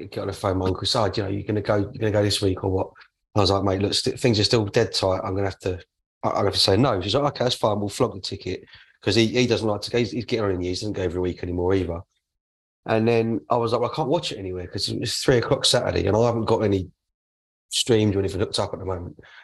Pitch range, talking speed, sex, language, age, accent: 100-140 Hz, 295 wpm, male, English, 30-49, British